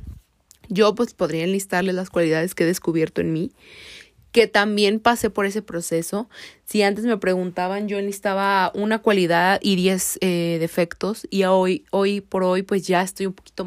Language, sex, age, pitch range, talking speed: Spanish, female, 20-39, 180-225 Hz, 165 wpm